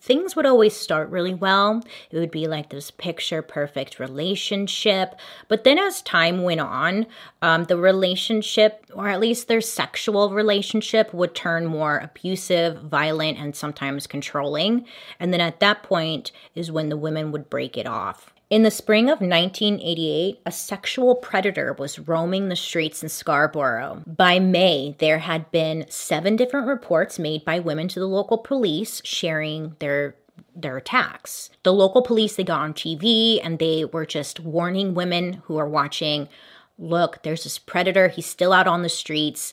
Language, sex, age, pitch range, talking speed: English, female, 30-49, 155-200 Hz, 165 wpm